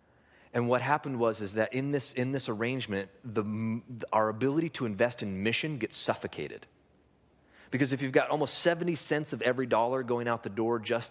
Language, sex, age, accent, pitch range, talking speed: English, male, 30-49, American, 95-120 Hz, 190 wpm